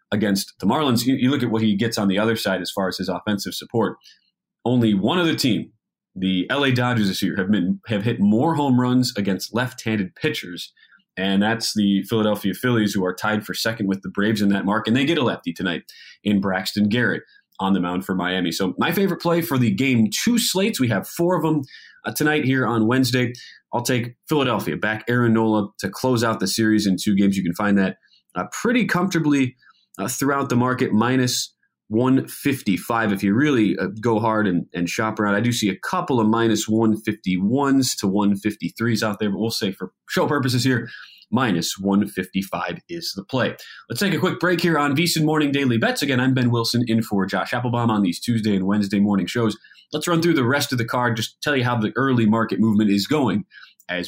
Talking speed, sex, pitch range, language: 215 wpm, male, 100-130 Hz, English